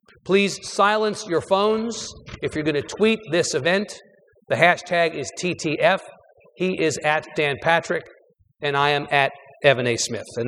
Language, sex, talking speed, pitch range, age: English, male, 155 wpm, 155-200 Hz, 50-69